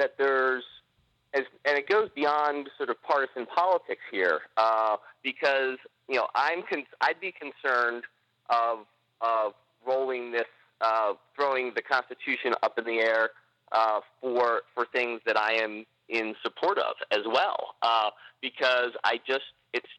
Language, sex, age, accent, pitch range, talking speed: English, male, 30-49, American, 115-140 Hz, 145 wpm